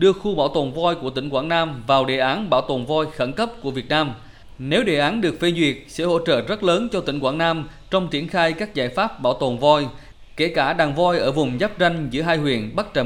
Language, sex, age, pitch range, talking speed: Vietnamese, male, 20-39, 125-170 Hz, 260 wpm